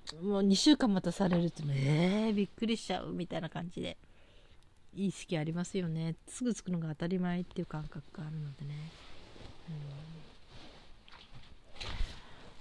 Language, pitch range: Japanese, 155-185 Hz